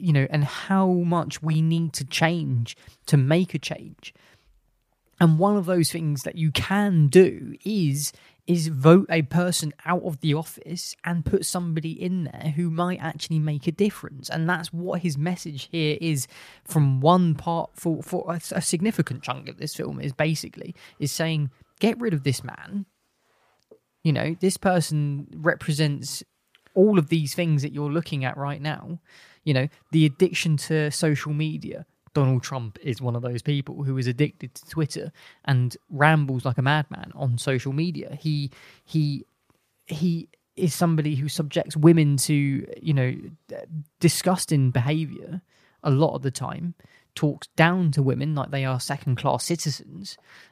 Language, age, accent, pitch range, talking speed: English, 20-39, British, 140-170 Hz, 165 wpm